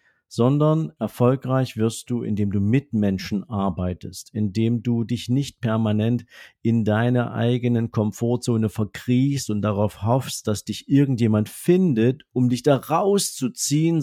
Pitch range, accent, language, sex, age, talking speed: 105-135 Hz, German, German, male, 50-69, 130 wpm